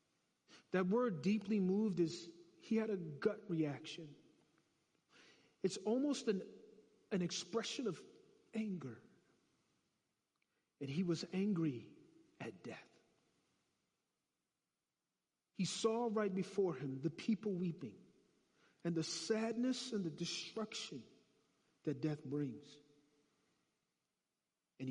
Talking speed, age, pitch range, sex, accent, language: 100 wpm, 50-69, 145-200 Hz, male, American, English